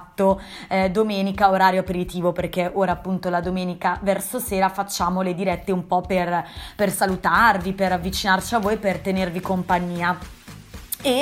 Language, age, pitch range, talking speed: Italian, 20-39, 190-235 Hz, 145 wpm